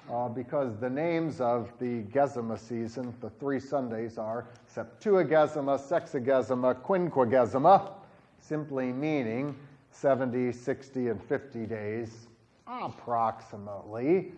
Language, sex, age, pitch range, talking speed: English, male, 40-59, 125-175 Hz, 95 wpm